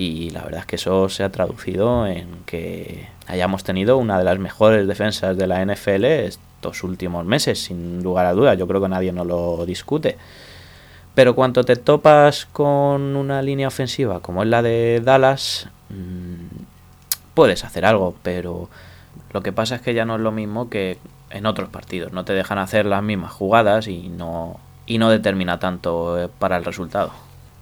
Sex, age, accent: male, 20-39, Spanish